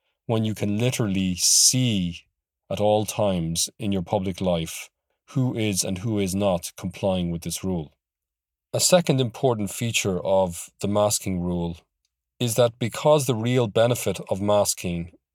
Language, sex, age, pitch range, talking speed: English, male, 40-59, 85-110 Hz, 150 wpm